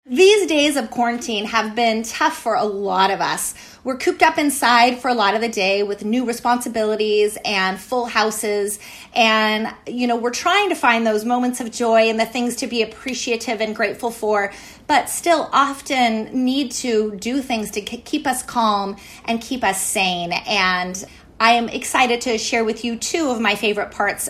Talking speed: 190 wpm